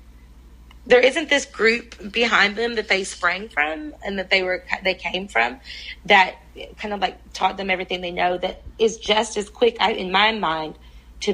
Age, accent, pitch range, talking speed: 30-49, American, 175-200 Hz, 185 wpm